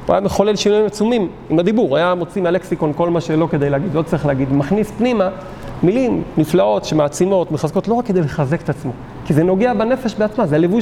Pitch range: 165-220 Hz